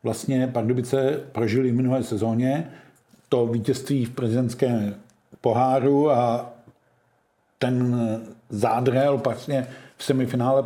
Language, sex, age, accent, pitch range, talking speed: Czech, male, 50-69, native, 120-135 Hz, 90 wpm